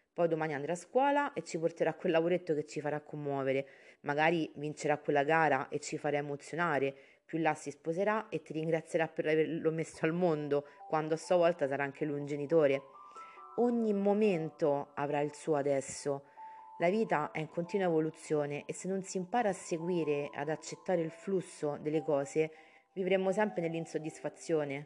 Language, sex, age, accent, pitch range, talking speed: Italian, female, 30-49, native, 150-180 Hz, 170 wpm